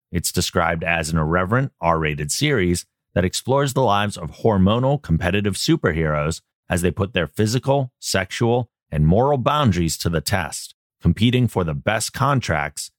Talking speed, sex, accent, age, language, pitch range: 150 wpm, male, American, 30-49, English, 85-115 Hz